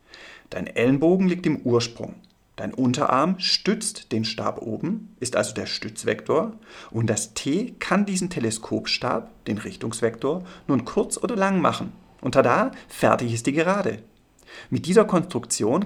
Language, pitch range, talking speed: German, 115-175 Hz, 140 wpm